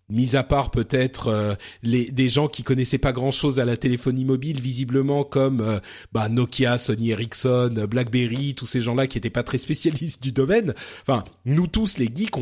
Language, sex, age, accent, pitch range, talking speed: French, male, 40-59, French, 120-155 Hz, 190 wpm